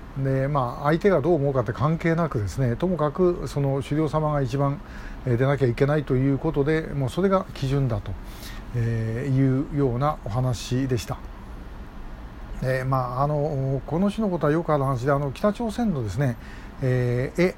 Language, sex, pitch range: Japanese, male, 125-160 Hz